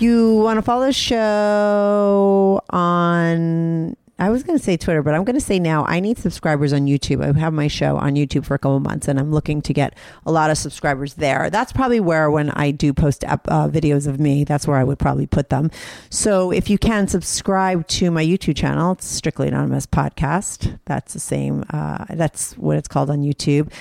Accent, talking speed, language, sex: American, 215 wpm, English, female